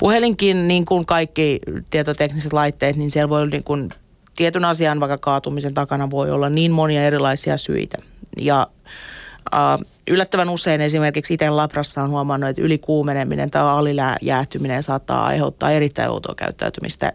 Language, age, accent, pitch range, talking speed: Finnish, 30-49, native, 145-170 Hz, 140 wpm